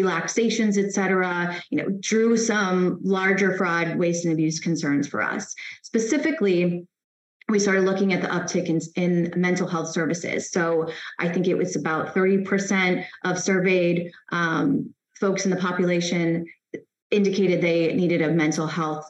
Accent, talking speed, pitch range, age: American, 150 wpm, 165-195 Hz, 20-39